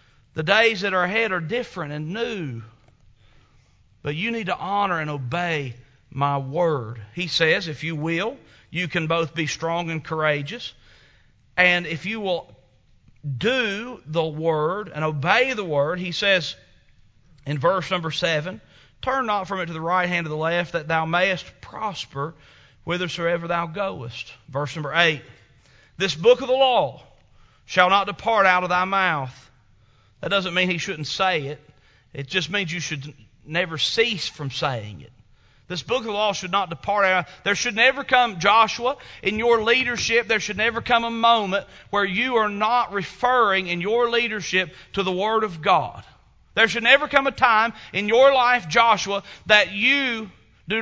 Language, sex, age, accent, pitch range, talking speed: English, male, 40-59, American, 150-210 Hz, 170 wpm